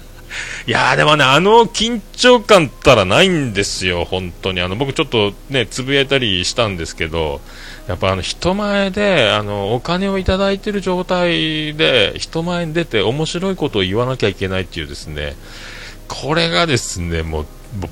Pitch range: 95-155 Hz